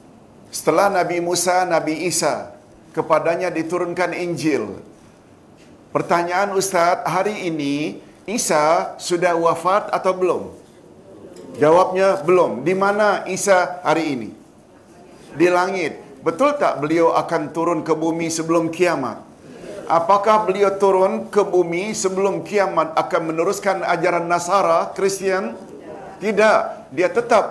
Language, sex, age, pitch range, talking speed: Malayalam, male, 50-69, 165-195 Hz, 110 wpm